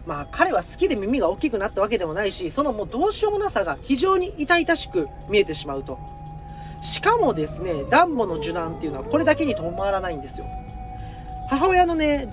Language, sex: Japanese, male